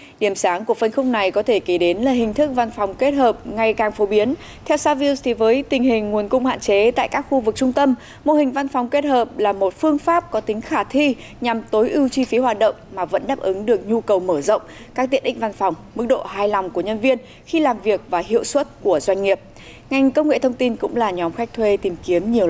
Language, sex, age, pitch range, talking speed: Vietnamese, female, 20-39, 195-265 Hz, 270 wpm